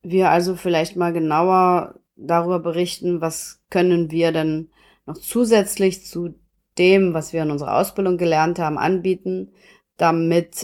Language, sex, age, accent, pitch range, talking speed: German, female, 30-49, German, 170-195 Hz, 135 wpm